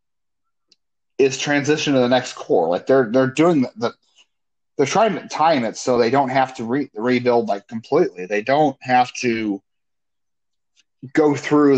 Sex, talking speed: male, 165 wpm